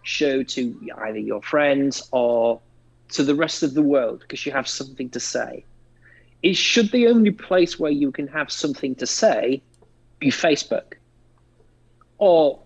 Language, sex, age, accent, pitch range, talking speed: English, male, 40-59, British, 120-180 Hz, 155 wpm